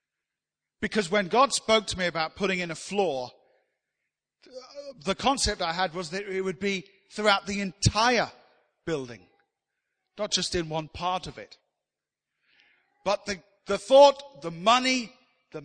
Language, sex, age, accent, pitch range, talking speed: English, male, 50-69, British, 160-220 Hz, 145 wpm